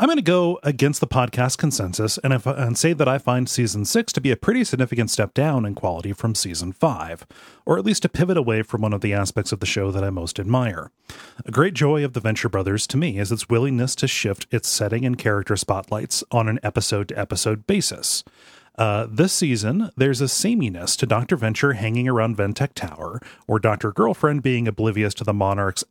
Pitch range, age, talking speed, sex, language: 105-140 Hz, 30-49, 215 wpm, male, English